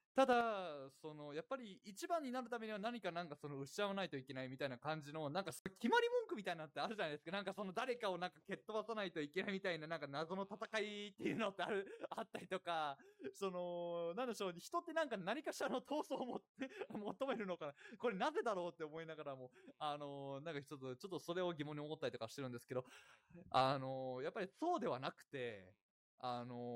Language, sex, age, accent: Japanese, male, 20-39, native